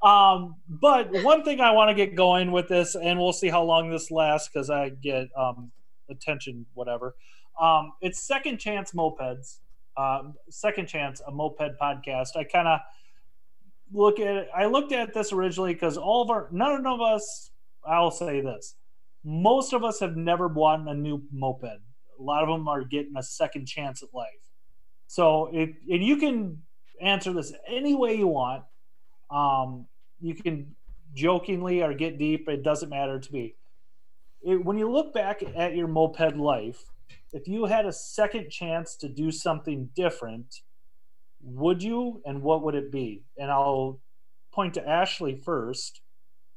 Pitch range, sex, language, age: 140-200 Hz, male, English, 30-49